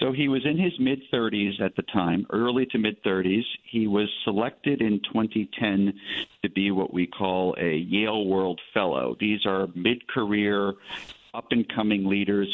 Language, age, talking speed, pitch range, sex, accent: English, 50-69, 165 wpm, 95-115 Hz, male, American